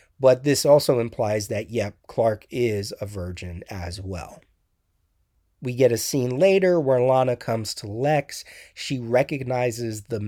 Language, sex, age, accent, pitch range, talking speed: English, male, 30-49, American, 115-145 Hz, 145 wpm